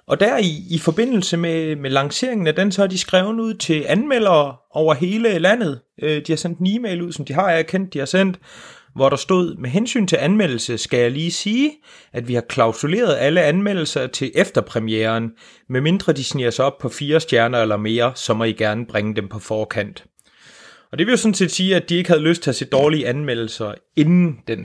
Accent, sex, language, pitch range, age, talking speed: native, male, Danish, 120-170 Hz, 30-49, 220 wpm